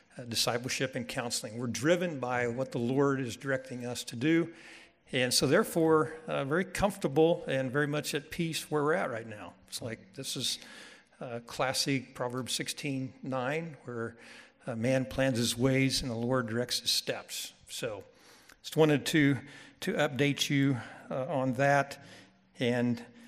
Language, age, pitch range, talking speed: English, 60-79, 125-160 Hz, 160 wpm